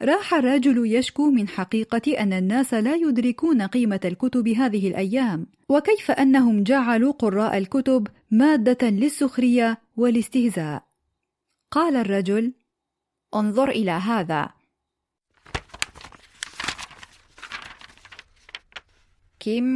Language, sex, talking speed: Arabic, female, 80 wpm